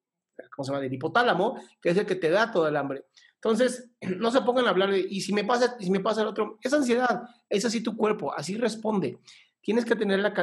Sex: male